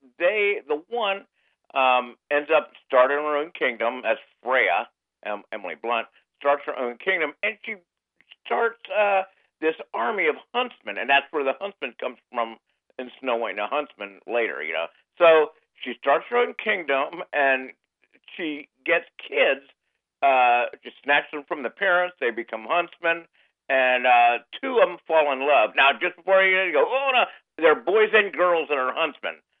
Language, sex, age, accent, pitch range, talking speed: English, male, 50-69, American, 130-195 Hz, 170 wpm